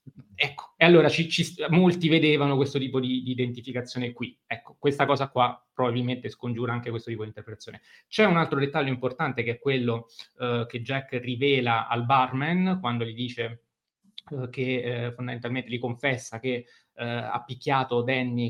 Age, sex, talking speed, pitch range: 20-39, male, 160 wpm, 120-145 Hz